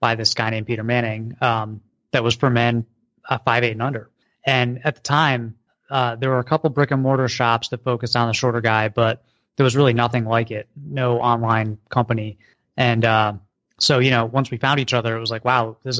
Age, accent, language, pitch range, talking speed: 20-39, American, English, 115-135 Hz, 235 wpm